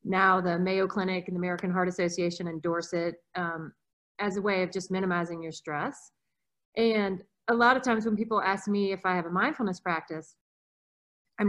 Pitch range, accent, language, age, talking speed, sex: 170-215 Hz, American, English, 30-49, 190 wpm, female